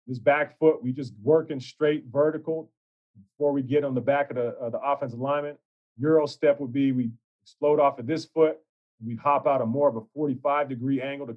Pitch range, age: 125-155 Hz, 40-59